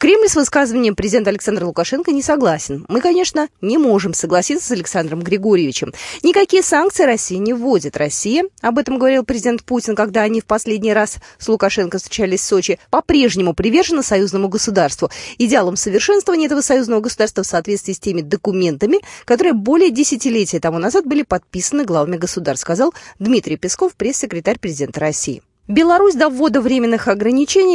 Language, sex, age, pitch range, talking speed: Russian, female, 20-39, 200-285 Hz, 155 wpm